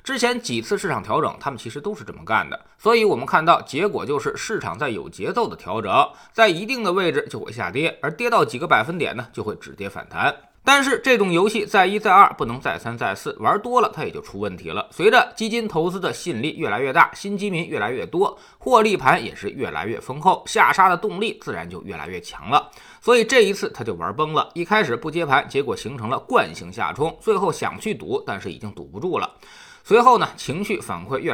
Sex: male